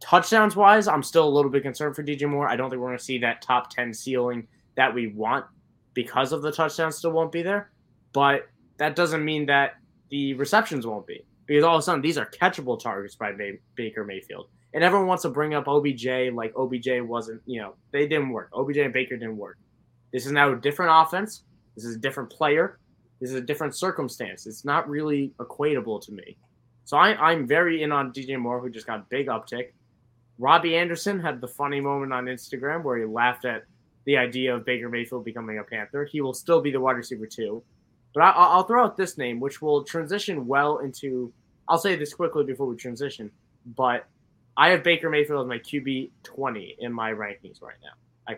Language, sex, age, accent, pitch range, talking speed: English, male, 20-39, American, 120-150 Hz, 210 wpm